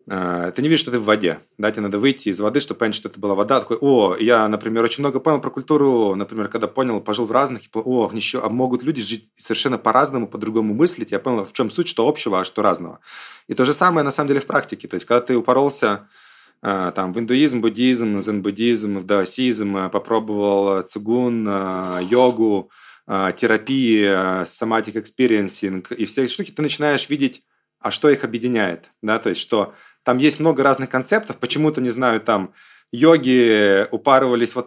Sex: male